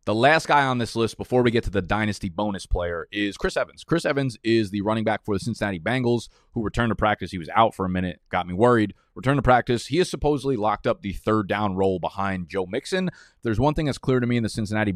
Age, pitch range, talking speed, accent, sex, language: 20-39, 95-120 Hz, 260 wpm, American, male, English